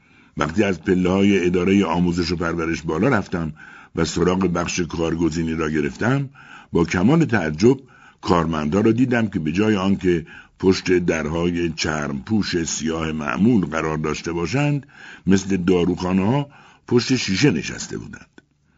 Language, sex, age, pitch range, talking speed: Persian, male, 60-79, 80-120 Hz, 130 wpm